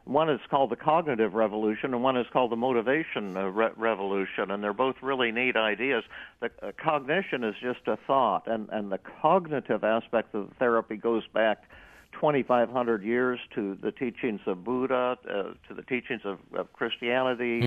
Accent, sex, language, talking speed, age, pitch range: American, male, English, 175 wpm, 60-79, 115-135 Hz